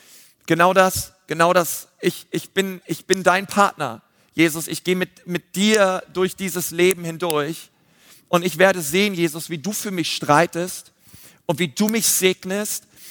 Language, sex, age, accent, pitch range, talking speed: German, male, 40-59, German, 165-200 Hz, 165 wpm